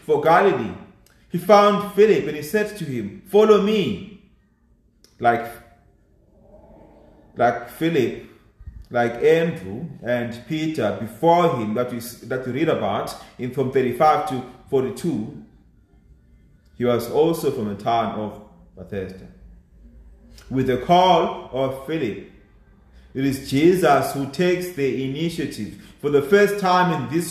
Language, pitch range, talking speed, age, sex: English, 110-175 Hz, 125 wpm, 30-49, male